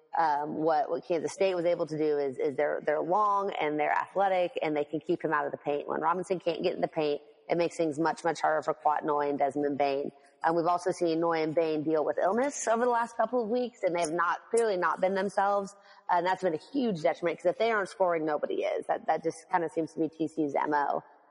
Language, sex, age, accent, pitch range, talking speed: English, female, 30-49, American, 155-190 Hz, 260 wpm